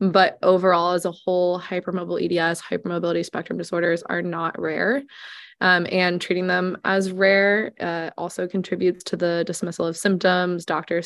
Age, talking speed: 20-39, 150 wpm